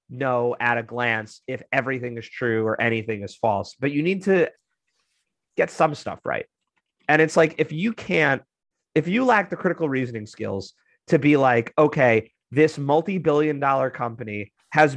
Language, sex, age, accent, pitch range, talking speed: English, male, 30-49, American, 120-155 Hz, 170 wpm